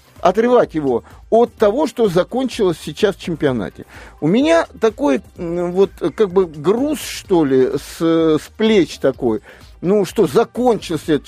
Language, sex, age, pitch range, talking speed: Russian, male, 50-69, 145-220 Hz, 140 wpm